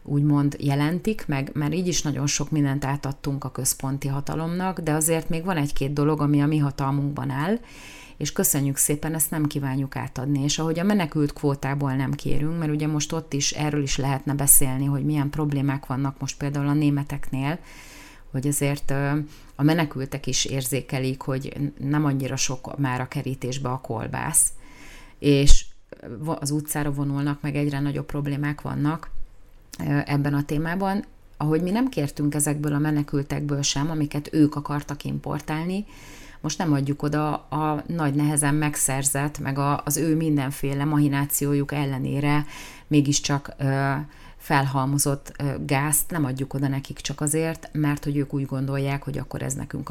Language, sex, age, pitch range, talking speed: Hungarian, female, 30-49, 135-150 Hz, 150 wpm